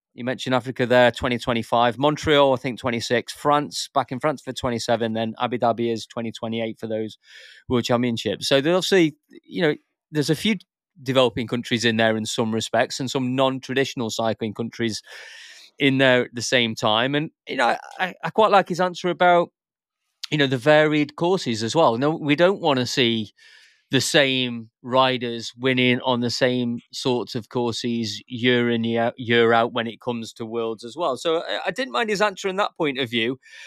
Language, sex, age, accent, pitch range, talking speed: English, male, 30-49, British, 120-150 Hz, 205 wpm